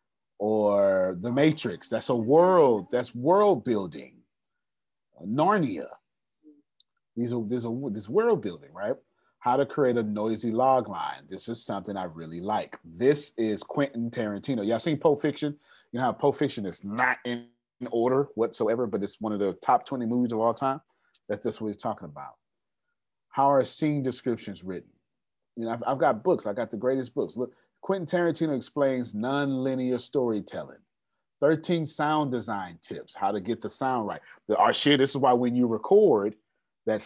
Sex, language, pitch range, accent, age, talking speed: male, English, 110-145 Hz, American, 30-49, 170 wpm